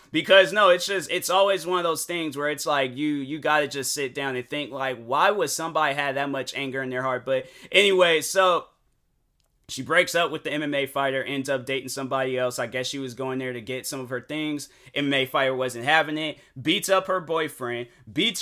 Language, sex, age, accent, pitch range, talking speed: English, male, 20-39, American, 135-170 Hz, 225 wpm